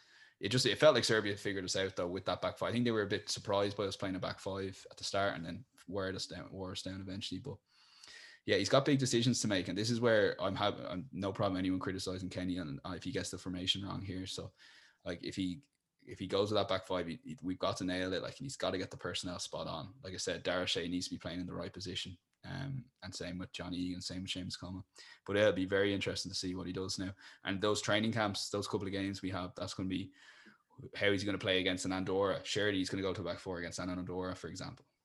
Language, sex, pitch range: English, male, 90-100 Hz